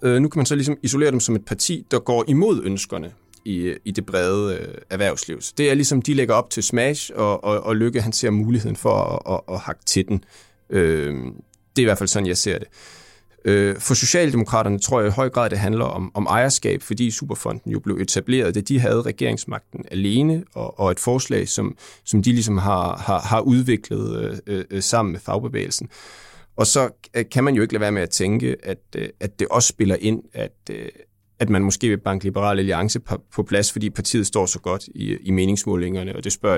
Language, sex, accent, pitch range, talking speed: Danish, male, native, 100-125 Hz, 210 wpm